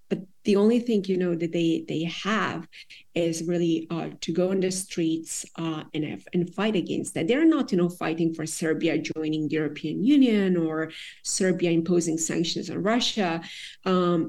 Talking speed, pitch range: 180 wpm, 165-190 Hz